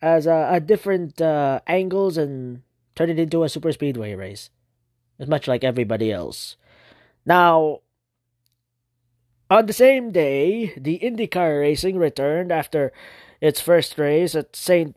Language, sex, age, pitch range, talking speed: English, male, 20-39, 125-190 Hz, 135 wpm